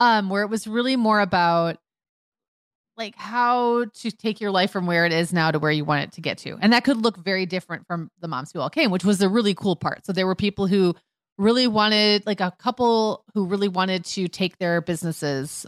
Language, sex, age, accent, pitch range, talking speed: English, female, 30-49, American, 170-215 Hz, 235 wpm